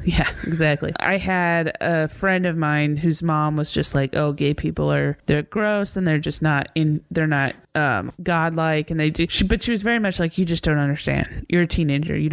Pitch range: 150-175 Hz